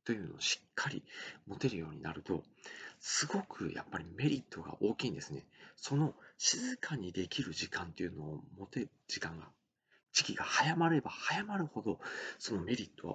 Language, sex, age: Japanese, male, 40-59